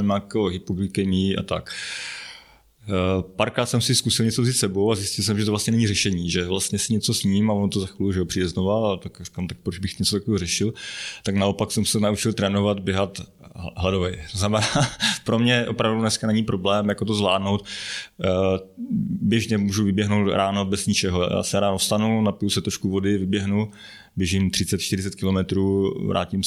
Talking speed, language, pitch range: 175 wpm, Slovak, 95-105 Hz